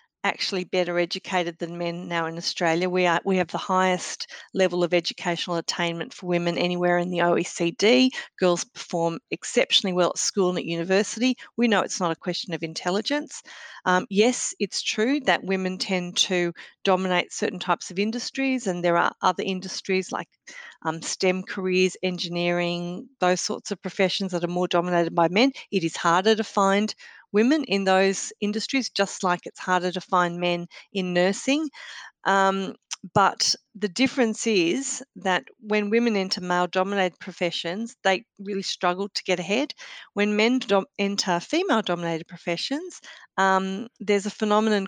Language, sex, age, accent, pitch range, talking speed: English, female, 40-59, Australian, 175-205 Hz, 160 wpm